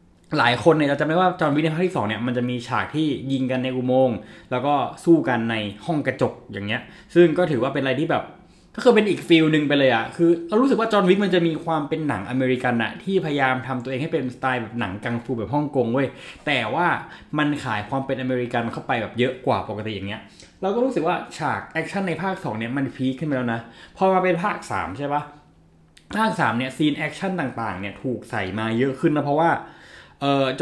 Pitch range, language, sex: 125-165 Hz, Thai, male